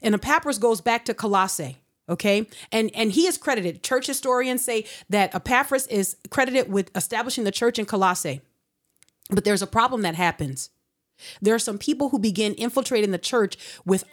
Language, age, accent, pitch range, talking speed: English, 30-49, American, 205-270 Hz, 175 wpm